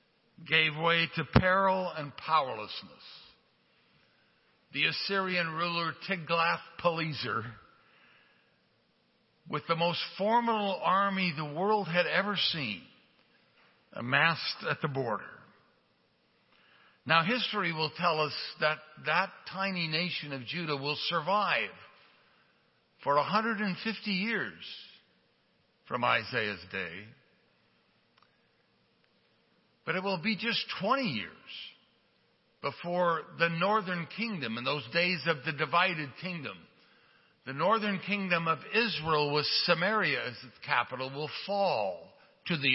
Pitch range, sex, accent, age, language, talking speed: 145-195 Hz, male, American, 60-79, English, 105 wpm